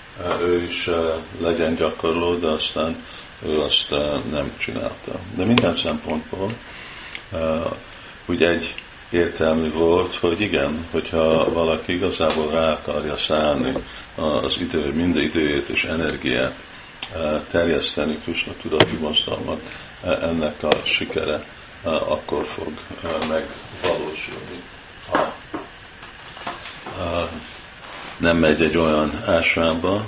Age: 50-69